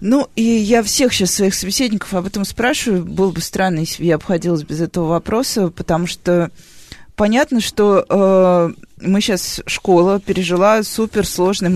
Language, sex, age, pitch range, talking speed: Russian, female, 20-39, 170-205 Hz, 155 wpm